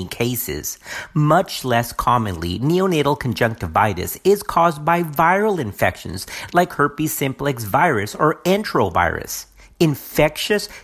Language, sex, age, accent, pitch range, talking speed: English, male, 50-69, American, 115-185 Hz, 100 wpm